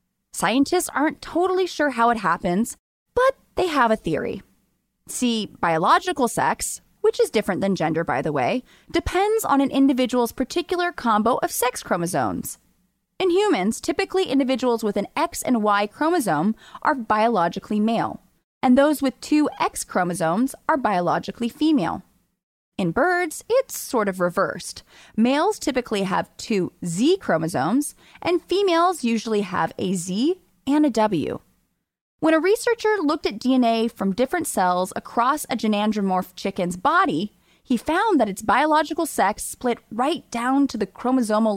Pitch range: 210-335 Hz